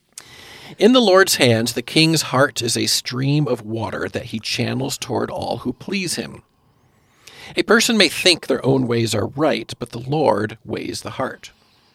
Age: 40-59